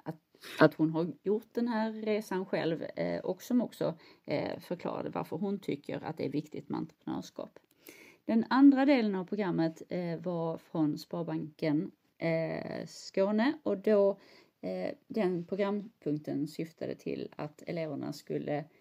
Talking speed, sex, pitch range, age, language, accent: 125 wpm, female, 155-215 Hz, 30-49, Swedish, native